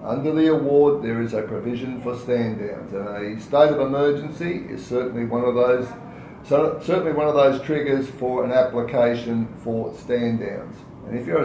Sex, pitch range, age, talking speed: male, 120-145 Hz, 50-69, 185 wpm